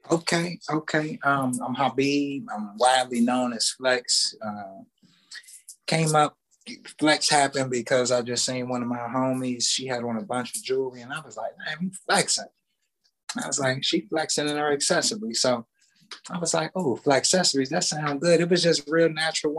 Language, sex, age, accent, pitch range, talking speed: English, male, 20-39, American, 125-165 Hz, 185 wpm